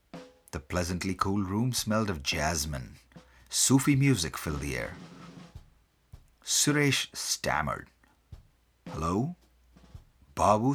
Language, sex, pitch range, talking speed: English, male, 80-120 Hz, 90 wpm